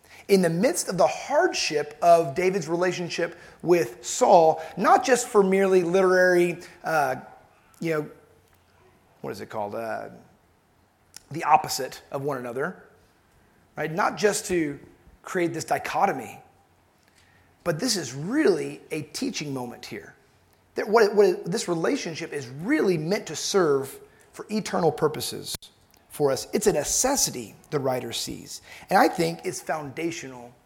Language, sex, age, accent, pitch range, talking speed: English, male, 30-49, American, 150-200 Hz, 135 wpm